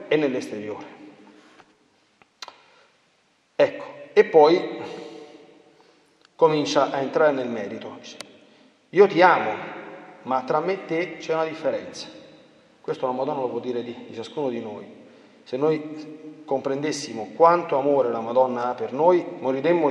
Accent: native